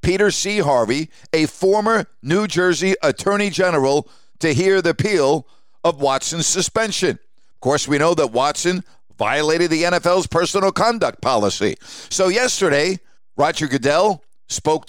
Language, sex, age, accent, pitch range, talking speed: English, male, 50-69, American, 140-190 Hz, 135 wpm